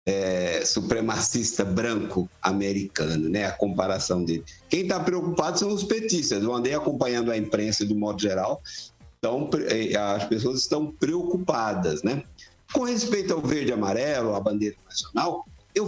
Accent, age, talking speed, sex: Brazilian, 60-79, 135 wpm, male